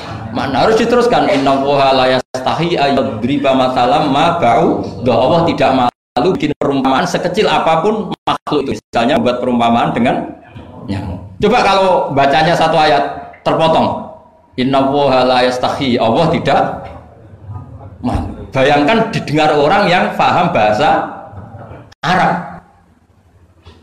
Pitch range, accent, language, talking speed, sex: 115-190 Hz, native, Indonesian, 90 wpm, male